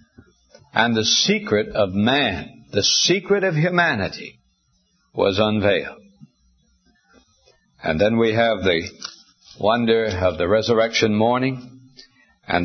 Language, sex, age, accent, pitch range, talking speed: English, male, 60-79, American, 110-145 Hz, 105 wpm